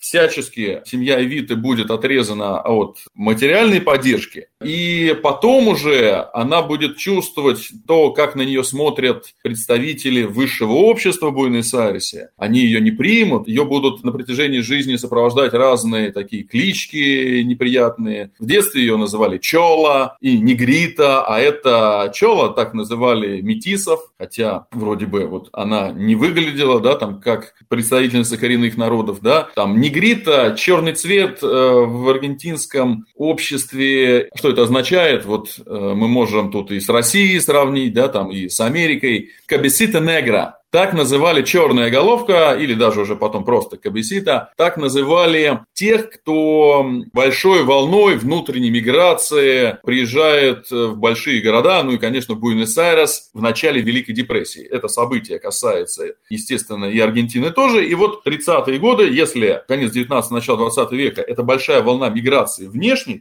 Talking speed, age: 135 wpm, 20-39